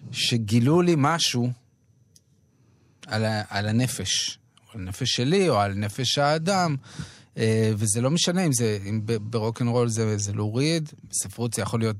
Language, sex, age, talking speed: Hebrew, male, 30-49, 155 wpm